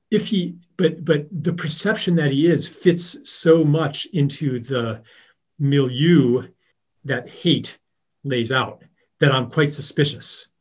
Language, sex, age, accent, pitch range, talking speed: English, male, 40-59, American, 120-155 Hz, 130 wpm